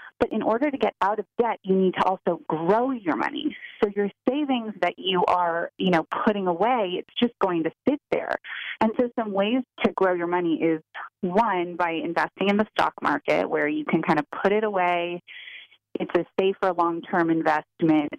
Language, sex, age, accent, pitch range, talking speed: English, female, 30-49, American, 170-230 Hz, 200 wpm